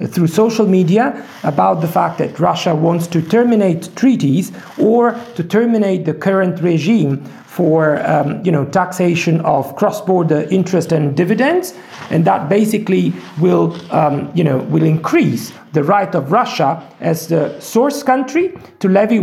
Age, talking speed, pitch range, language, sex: 40-59, 145 wpm, 170-225 Hz, Russian, male